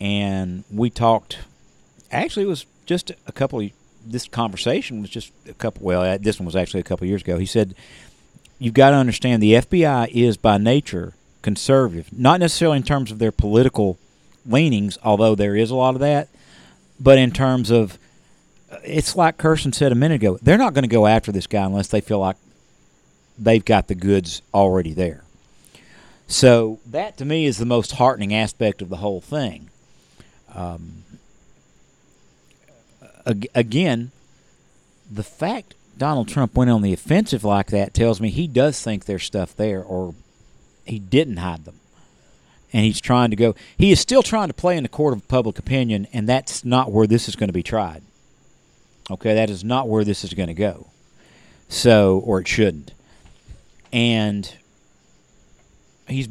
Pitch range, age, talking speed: 95-130 Hz, 50-69, 170 wpm